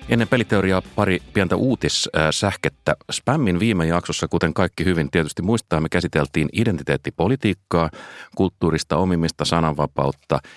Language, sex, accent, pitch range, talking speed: Finnish, male, native, 75-95 Hz, 110 wpm